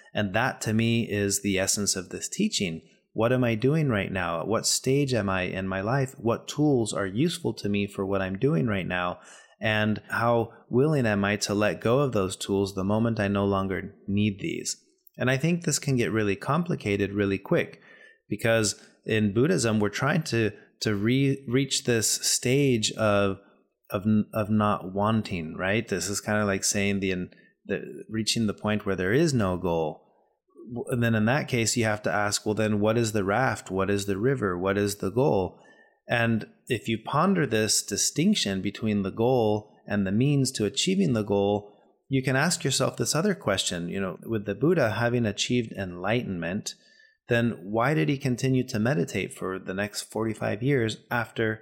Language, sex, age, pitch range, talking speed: English, male, 30-49, 100-130 Hz, 190 wpm